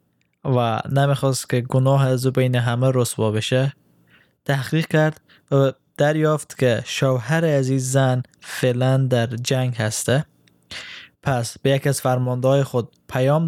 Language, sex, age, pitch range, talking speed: Persian, male, 20-39, 110-140 Hz, 130 wpm